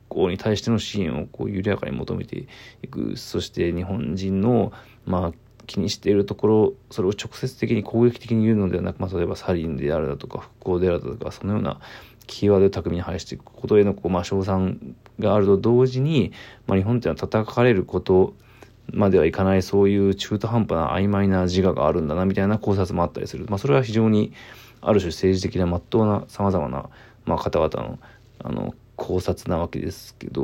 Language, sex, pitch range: Japanese, male, 95-115 Hz